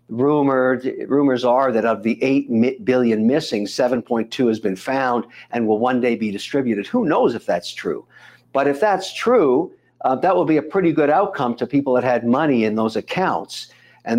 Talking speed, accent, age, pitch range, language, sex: 185 wpm, American, 60-79, 120-165 Hz, English, male